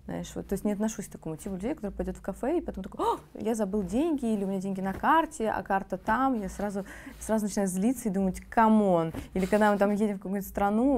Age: 20-39